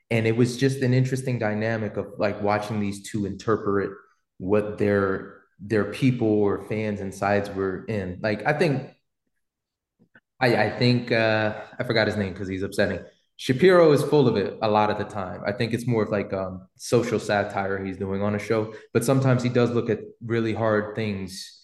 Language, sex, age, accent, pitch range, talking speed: English, male, 20-39, American, 100-120 Hz, 195 wpm